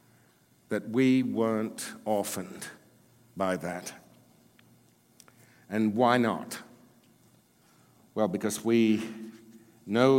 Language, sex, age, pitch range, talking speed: English, male, 50-69, 110-145 Hz, 75 wpm